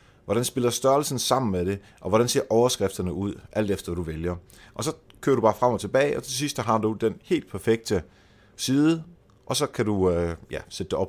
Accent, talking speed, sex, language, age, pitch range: native, 215 wpm, male, Danish, 30-49, 95-125 Hz